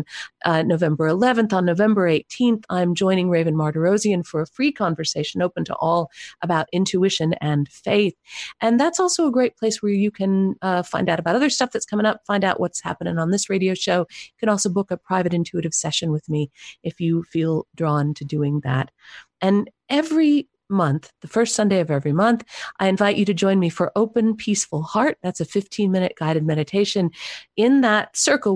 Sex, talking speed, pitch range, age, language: female, 190 wpm, 170-215 Hz, 50-69, English